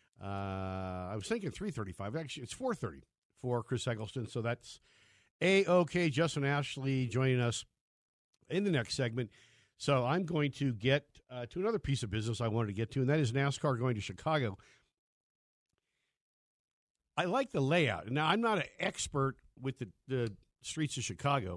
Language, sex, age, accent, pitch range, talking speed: English, male, 50-69, American, 105-140 Hz, 165 wpm